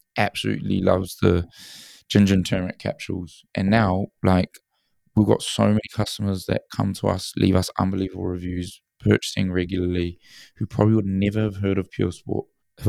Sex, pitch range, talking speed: male, 90-105 Hz, 165 wpm